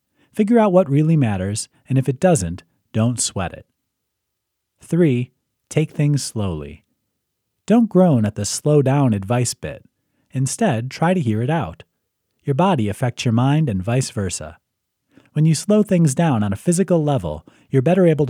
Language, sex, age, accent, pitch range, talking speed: English, male, 30-49, American, 105-155 Hz, 160 wpm